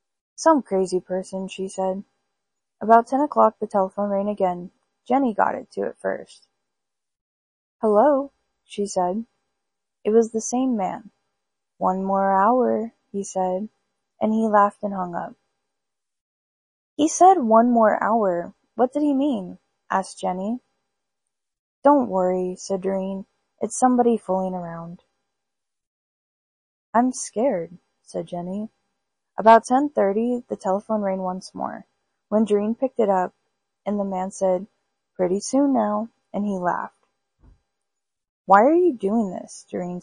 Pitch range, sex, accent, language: 190-230 Hz, female, American, English